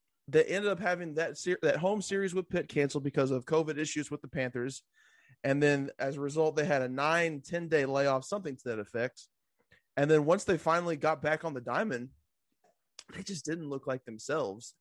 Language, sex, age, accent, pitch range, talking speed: English, male, 20-39, American, 125-155 Hz, 205 wpm